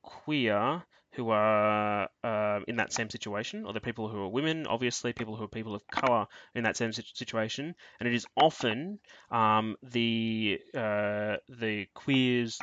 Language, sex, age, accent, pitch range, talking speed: English, male, 20-39, Australian, 105-120 Hz, 165 wpm